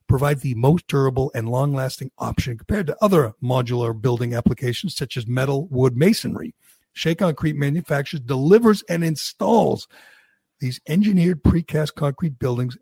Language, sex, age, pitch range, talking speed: English, male, 60-79, 130-160 Hz, 135 wpm